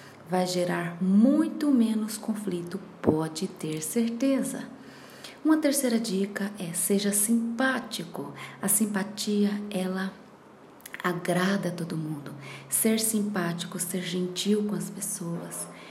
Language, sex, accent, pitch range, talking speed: Portuguese, female, Brazilian, 180-215 Hz, 100 wpm